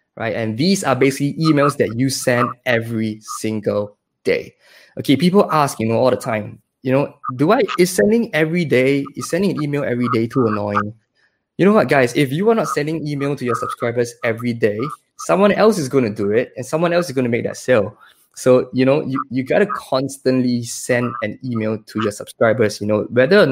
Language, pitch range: English, 115-140 Hz